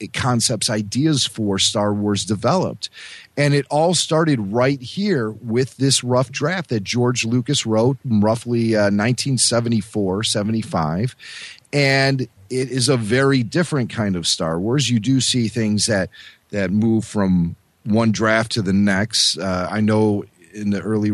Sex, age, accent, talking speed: male, 40-59, American, 150 wpm